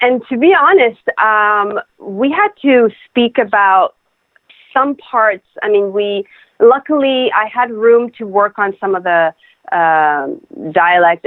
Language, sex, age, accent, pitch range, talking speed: English, female, 30-49, American, 180-240 Hz, 145 wpm